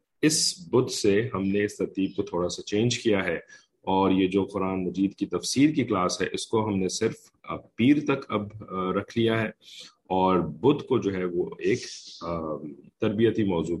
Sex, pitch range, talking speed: male, 90-110 Hz, 175 wpm